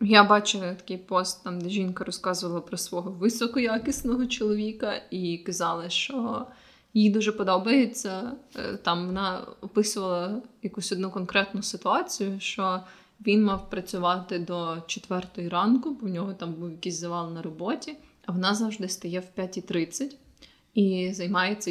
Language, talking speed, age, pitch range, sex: Ukrainian, 135 wpm, 20-39, 185-220 Hz, female